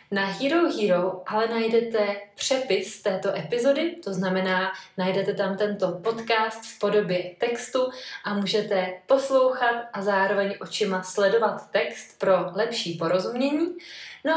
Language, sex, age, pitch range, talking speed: Czech, female, 20-39, 190-230 Hz, 120 wpm